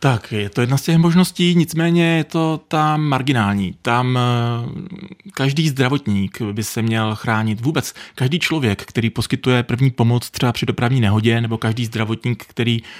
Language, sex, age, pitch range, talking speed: Czech, male, 30-49, 115-140 Hz, 155 wpm